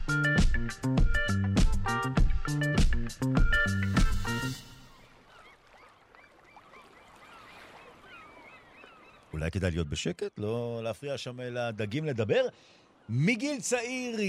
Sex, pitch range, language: male, 100-160 Hz, Hebrew